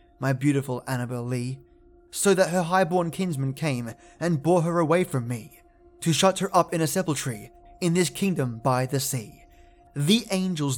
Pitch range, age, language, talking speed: 130-175 Hz, 20-39, English, 175 wpm